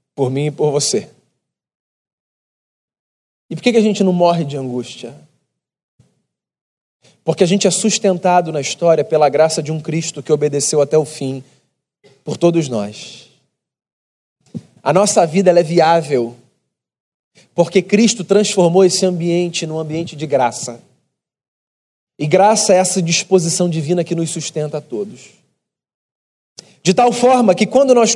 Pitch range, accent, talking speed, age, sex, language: 155-215 Hz, Brazilian, 140 wpm, 40-59, male, Portuguese